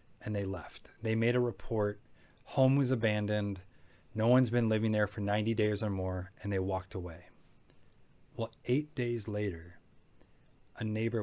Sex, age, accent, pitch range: male, 30-49, American, 95-120 Hz